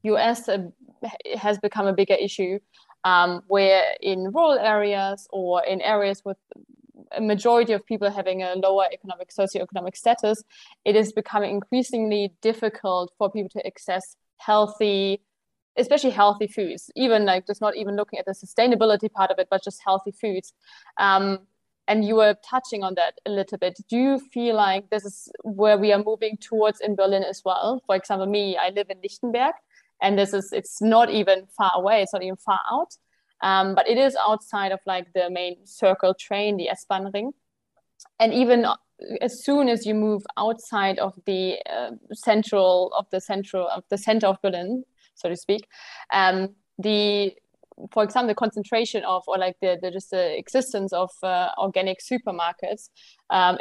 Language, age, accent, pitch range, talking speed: German, 20-39, German, 190-220 Hz, 175 wpm